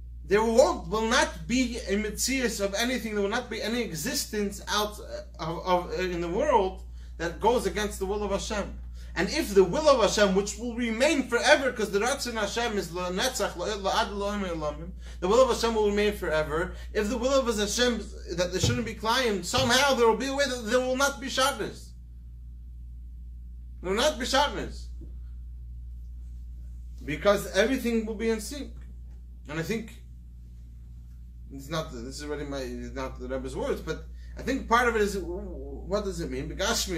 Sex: male